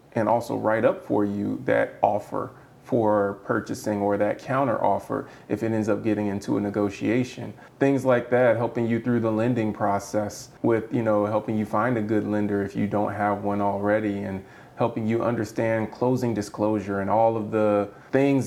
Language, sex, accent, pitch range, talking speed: English, male, American, 105-130 Hz, 185 wpm